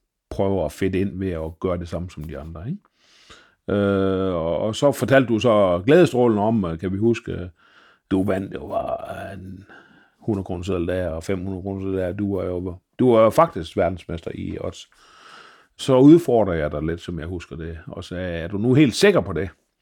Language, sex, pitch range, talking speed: Danish, male, 90-115 Hz, 190 wpm